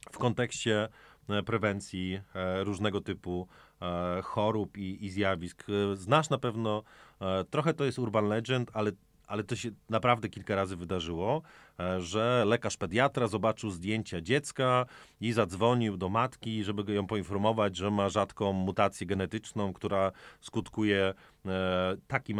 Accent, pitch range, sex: native, 95-120 Hz, male